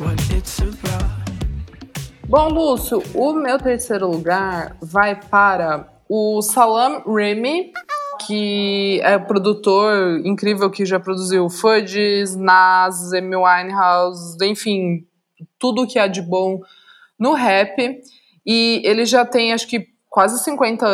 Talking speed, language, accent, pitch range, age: 110 wpm, Portuguese, Brazilian, 190-235 Hz, 20-39